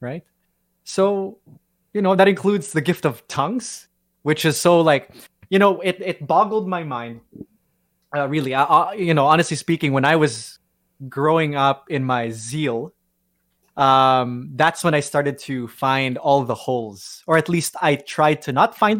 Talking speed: 175 wpm